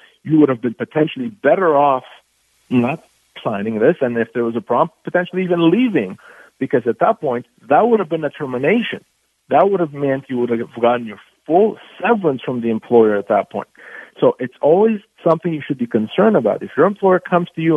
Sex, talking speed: male, 205 wpm